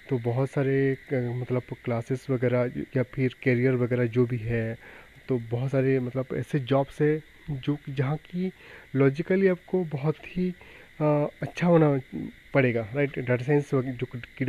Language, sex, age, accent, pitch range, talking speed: Hindi, male, 30-49, native, 125-145 Hz, 150 wpm